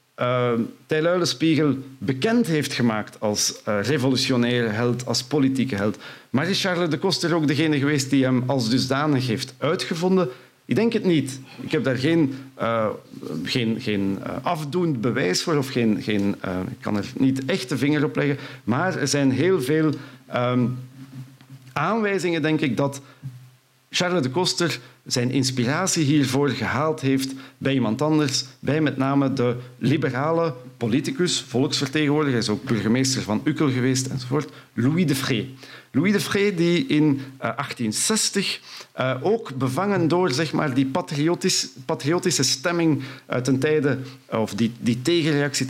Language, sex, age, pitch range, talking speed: Dutch, male, 50-69, 125-155 Hz, 150 wpm